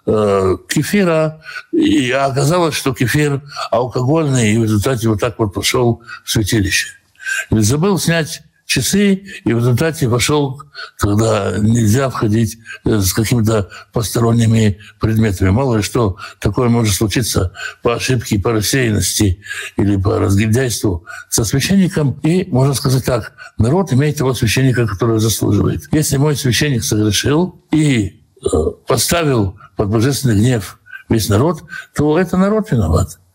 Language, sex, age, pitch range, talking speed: Russian, male, 60-79, 110-150 Hz, 125 wpm